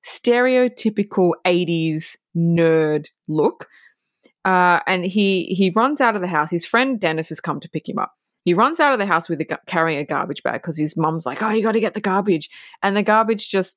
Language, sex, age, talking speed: English, female, 20-39, 215 wpm